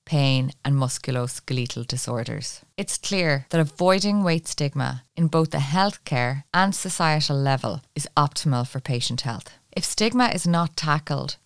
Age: 20-39